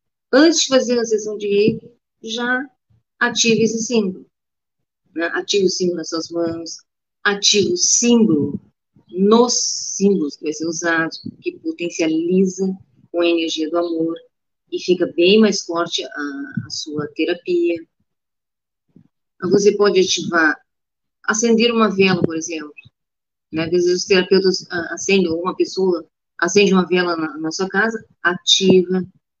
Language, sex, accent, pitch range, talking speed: Portuguese, female, Brazilian, 170-220 Hz, 135 wpm